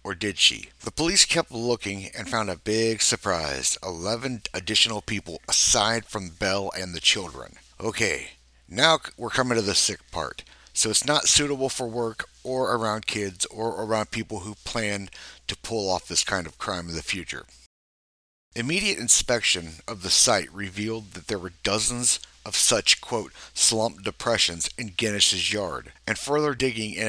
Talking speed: 165 wpm